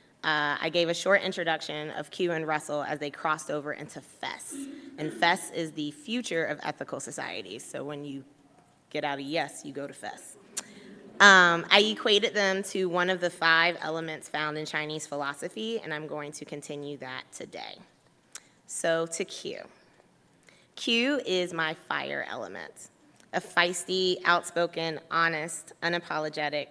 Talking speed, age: 155 wpm, 20-39